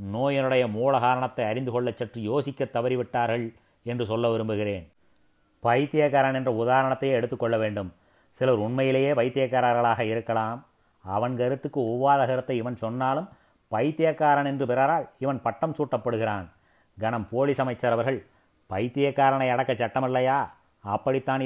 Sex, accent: male, native